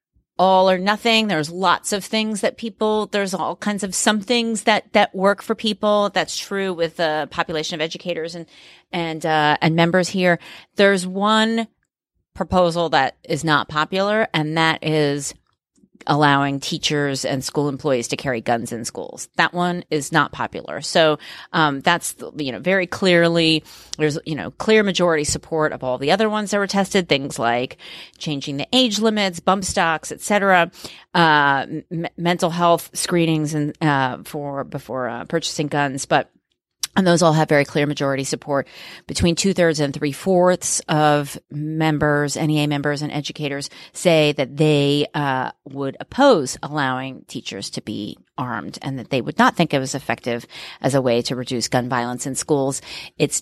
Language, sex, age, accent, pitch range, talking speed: English, female, 30-49, American, 145-185 Hz, 165 wpm